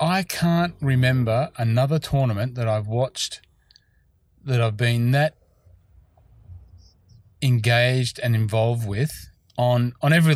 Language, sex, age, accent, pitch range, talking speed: English, male, 30-49, Australian, 110-130 Hz, 110 wpm